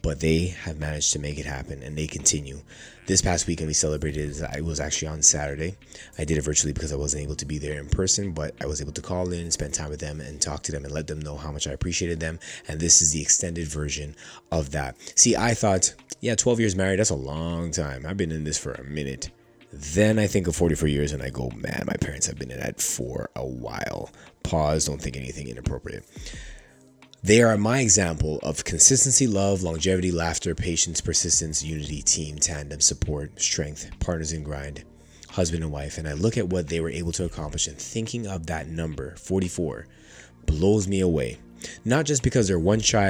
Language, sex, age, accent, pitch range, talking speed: English, male, 20-39, American, 75-90 Hz, 215 wpm